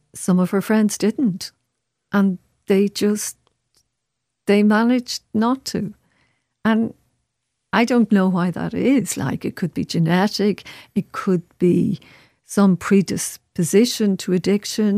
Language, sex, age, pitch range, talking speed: English, female, 50-69, 170-210 Hz, 125 wpm